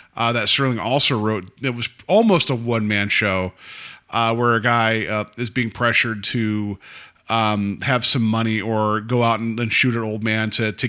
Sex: male